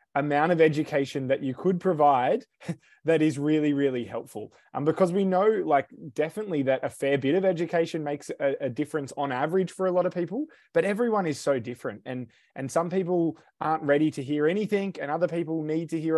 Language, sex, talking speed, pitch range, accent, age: English, male, 205 wpm, 145-170 Hz, Australian, 20-39